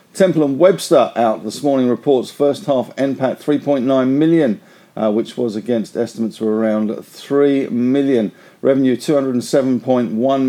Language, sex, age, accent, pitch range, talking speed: English, male, 50-69, British, 115-145 Hz, 130 wpm